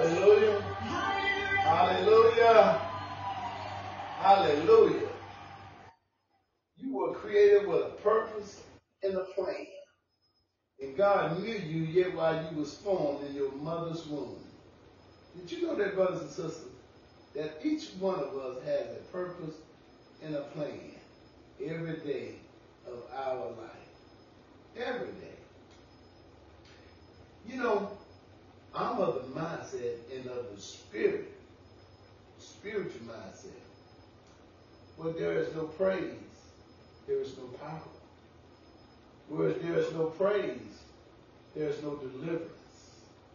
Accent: American